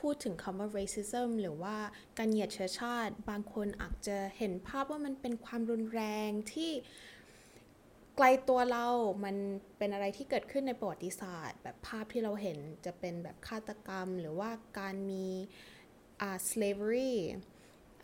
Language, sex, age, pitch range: Thai, female, 20-39, 195-245 Hz